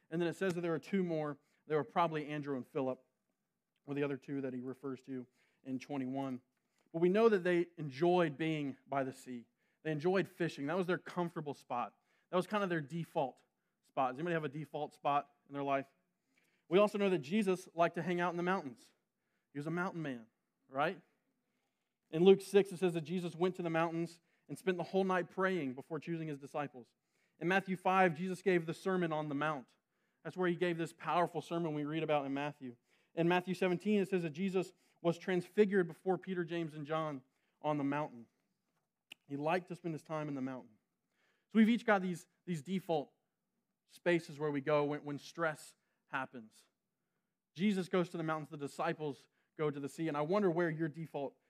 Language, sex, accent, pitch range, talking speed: English, male, American, 145-185 Hz, 205 wpm